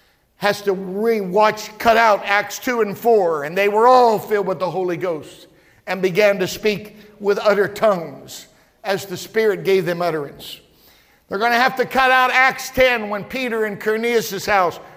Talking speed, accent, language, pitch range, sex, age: 180 wpm, American, English, 180-225 Hz, male, 50-69